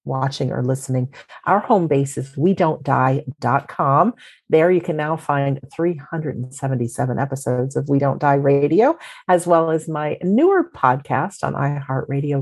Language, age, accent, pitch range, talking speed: English, 40-59, American, 130-165 Hz, 145 wpm